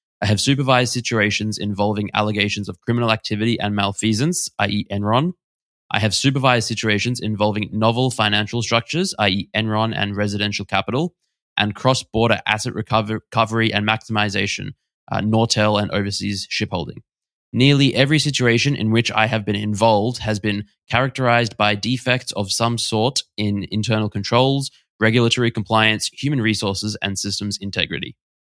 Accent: Australian